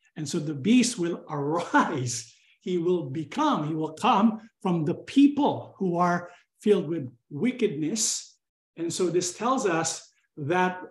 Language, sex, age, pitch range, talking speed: English, male, 50-69, 160-230 Hz, 145 wpm